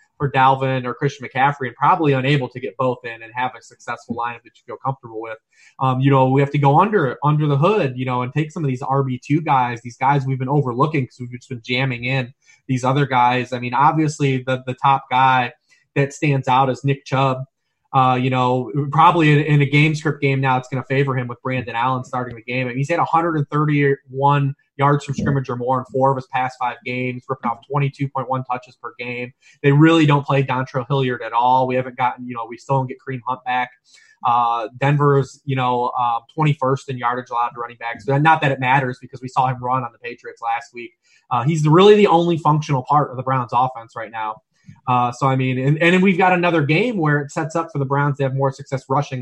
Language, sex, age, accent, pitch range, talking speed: English, male, 20-39, American, 125-145 Hz, 240 wpm